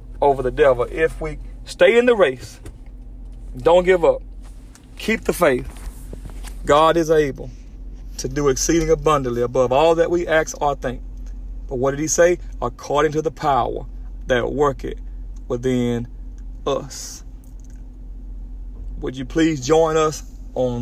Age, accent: 40-59, American